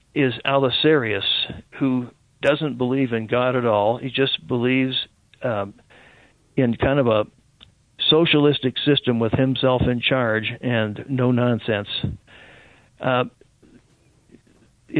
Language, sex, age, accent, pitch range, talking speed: English, male, 50-69, American, 120-140 Hz, 110 wpm